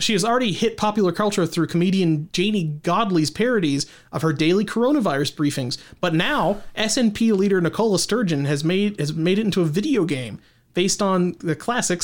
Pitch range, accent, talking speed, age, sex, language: 155-200 Hz, American, 175 wpm, 30-49, male, English